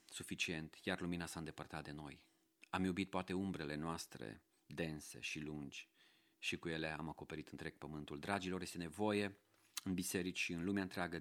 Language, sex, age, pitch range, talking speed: Romanian, male, 40-59, 85-105 Hz, 165 wpm